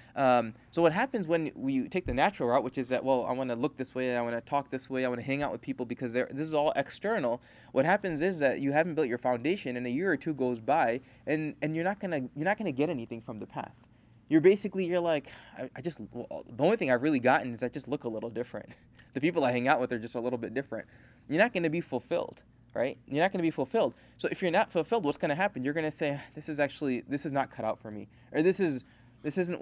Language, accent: English, American